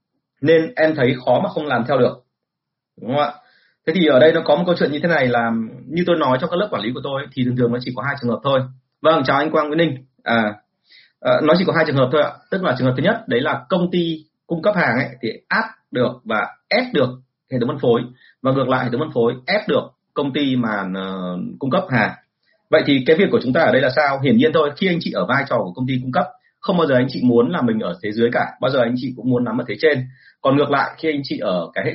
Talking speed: 295 wpm